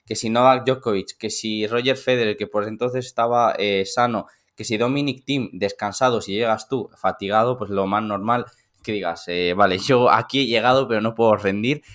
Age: 20-39